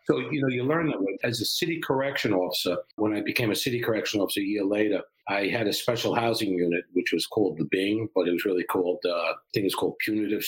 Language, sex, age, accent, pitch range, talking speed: English, male, 50-69, American, 105-140 Hz, 245 wpm